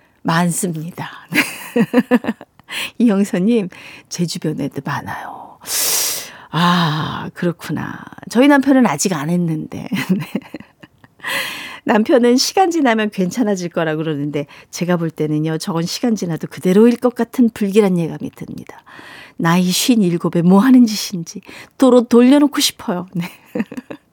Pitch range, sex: 175-265 Hz, female